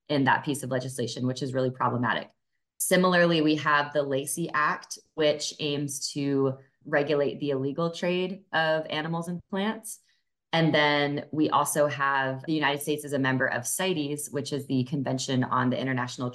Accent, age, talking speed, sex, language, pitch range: American, 20-39, 170 wpm, female, English, 130-155 Hz